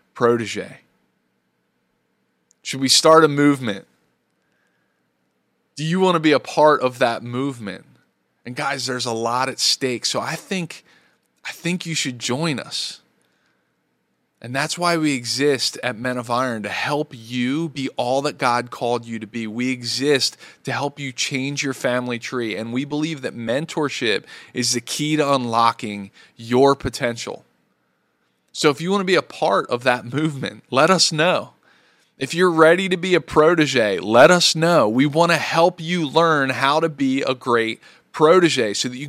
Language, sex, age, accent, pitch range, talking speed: English, male, 20-39, American, 120-155 Hz, 170 wpm